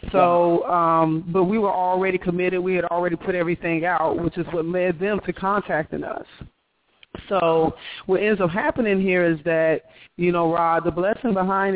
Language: English